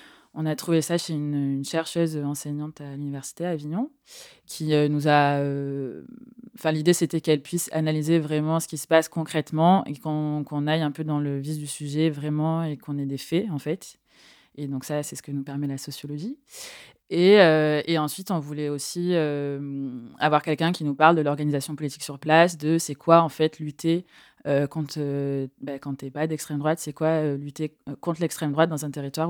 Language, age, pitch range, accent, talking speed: French, 20-39, 145-165 Hz, French, 205 wpm